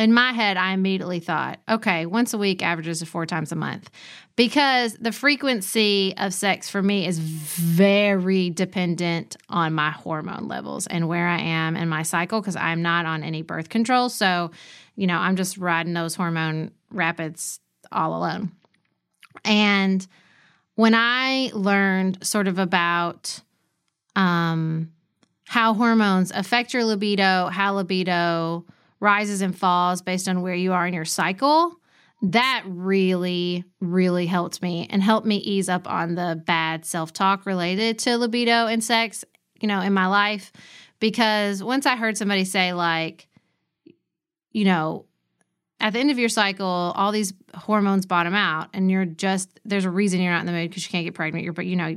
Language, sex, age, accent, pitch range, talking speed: English, female, 30-49, American, 170-210 Hz, 165 wpm